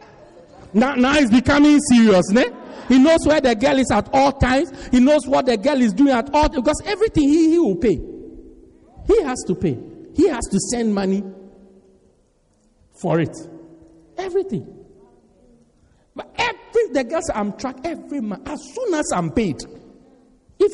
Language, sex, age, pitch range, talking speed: English, male, 50-69, 205-300 Hz, 160 wpm